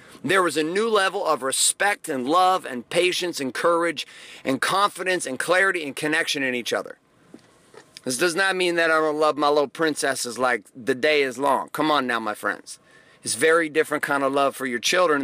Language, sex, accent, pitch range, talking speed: English, male, American, 150-215 Hz, 205 wpm